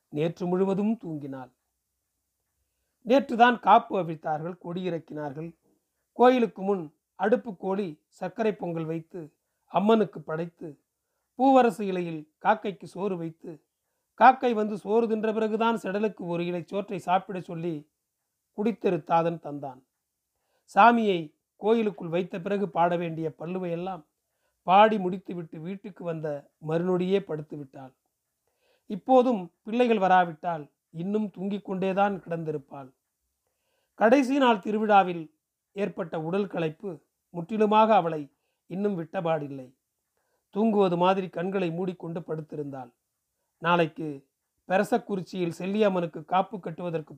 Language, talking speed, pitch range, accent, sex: Tamil, 95 wpm, 160-205 Hz, native, male